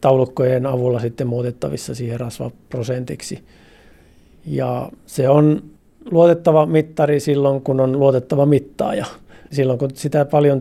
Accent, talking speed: native, 115 wpm